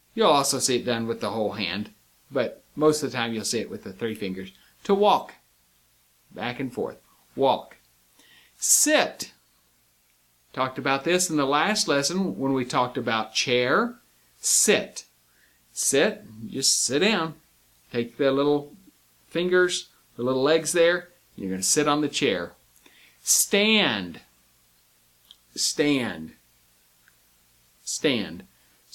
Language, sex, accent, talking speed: English, male, American, 135 wpm